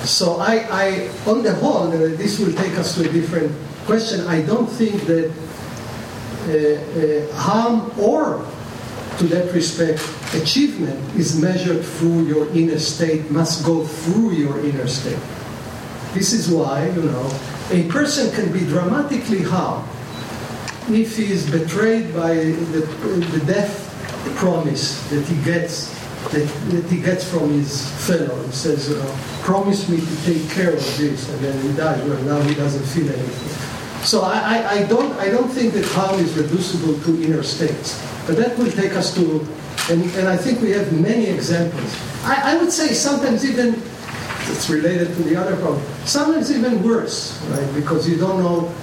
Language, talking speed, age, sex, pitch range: English, 165 wpm, 50-69, male, 150-195 Hz